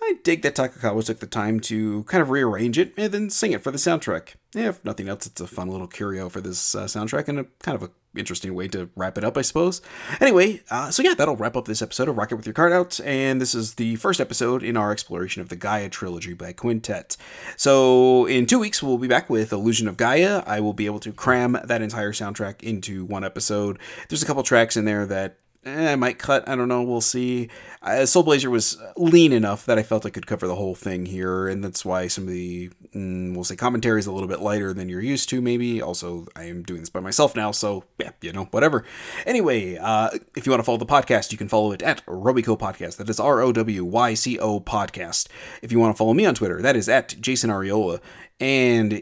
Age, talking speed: 30-49, 235 wpm